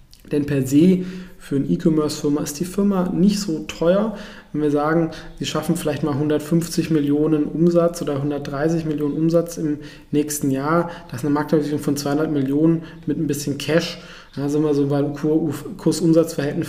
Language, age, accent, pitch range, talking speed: German, 20-39, German, 150-170 Hz, 170 wpm